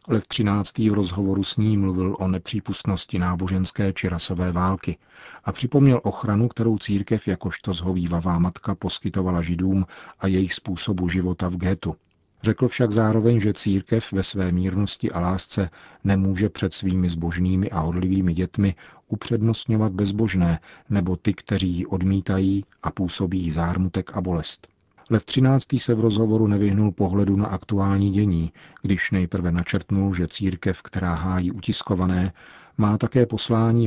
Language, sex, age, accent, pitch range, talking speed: Czech, male, 40-59, native, 90-105 Hz, 140 wpm